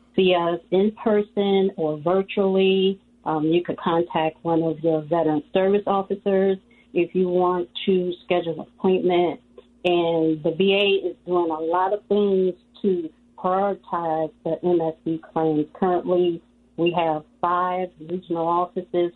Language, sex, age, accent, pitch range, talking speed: English, female, 40-59, American, 160-185 Hz, 135 wpm